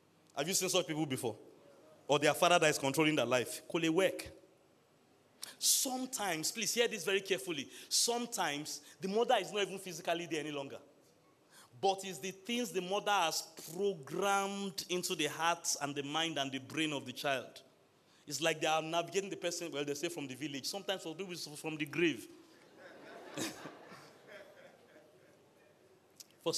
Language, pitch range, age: English, 160-200 Hz, 30-49